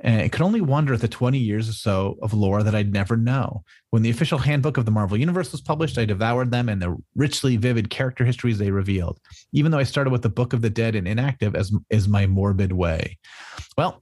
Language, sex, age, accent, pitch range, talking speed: English, male, 30-49, American, 105-145 Hz, 240 wpm